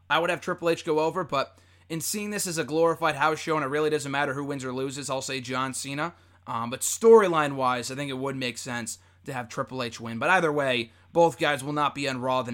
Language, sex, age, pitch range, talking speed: English, male, 20-39, 125-170 Hz, 260 wpm